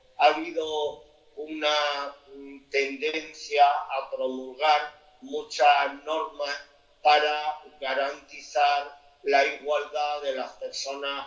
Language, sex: Spanish, male